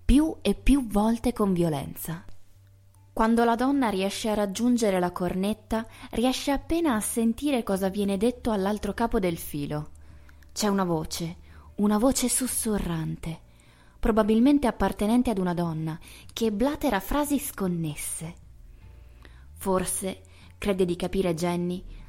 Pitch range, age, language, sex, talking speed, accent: 160-220 Hz, 20-39, Italian, female, 120 wpm, native